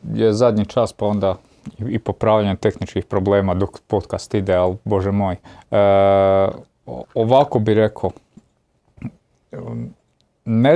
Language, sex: Croatian, male